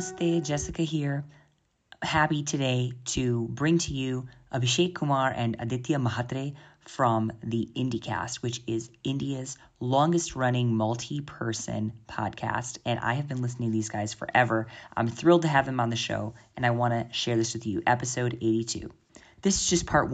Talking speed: 160 wpm